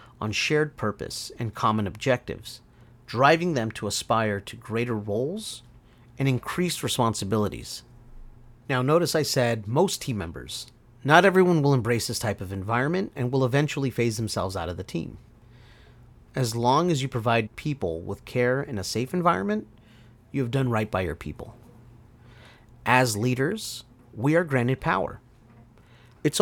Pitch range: 110-135 Hz